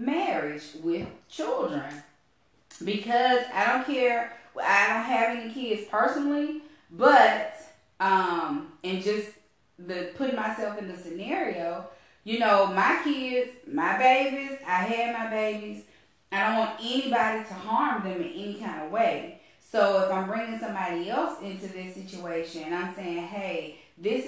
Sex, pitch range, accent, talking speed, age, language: female, 180-230 Hz, American, 145 wpm, 30-49, English